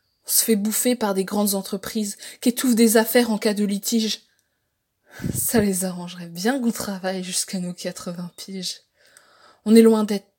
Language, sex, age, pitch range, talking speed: French, female, 20-39, 195-240 Hz, 170 wpm